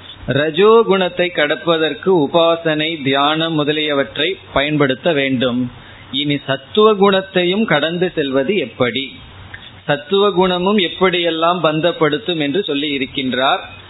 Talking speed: 80 wpm